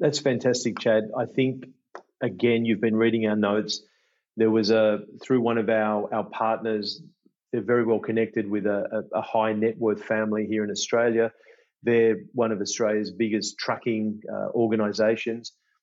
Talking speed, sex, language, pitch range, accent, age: 160 wpm, male, English, 105-115 Hz, Australian, 40-59